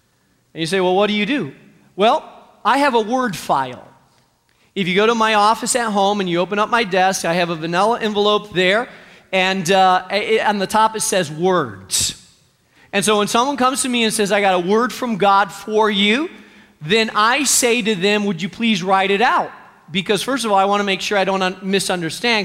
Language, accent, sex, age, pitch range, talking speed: English, American, male, 40-59, 195-265 Hz, 215 wpm